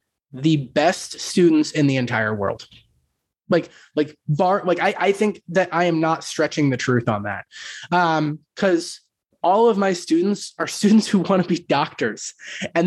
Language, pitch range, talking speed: English, 140-180 Hz, 175 wpm